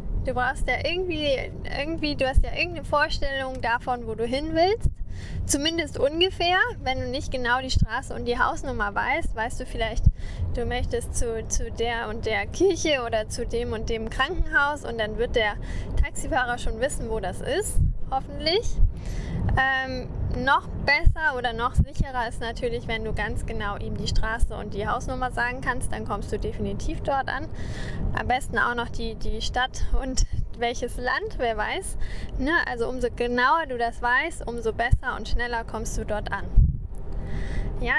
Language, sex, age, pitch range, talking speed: German, female, 10-29, 240-315 Hz, 170 wpm